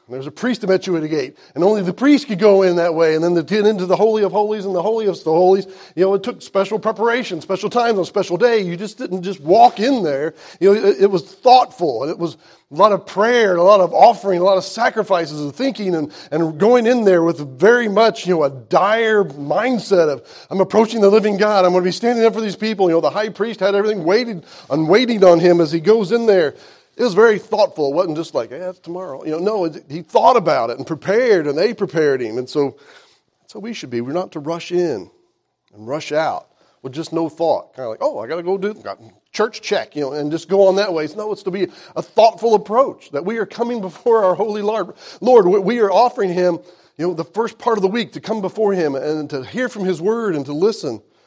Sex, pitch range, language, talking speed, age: male, 170-220 Hz, English, 265 wpm, 40-59